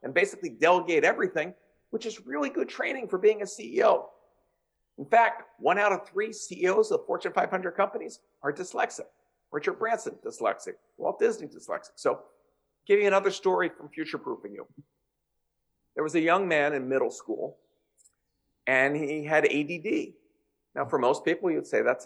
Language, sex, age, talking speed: English, male, 50-69, 160 wpm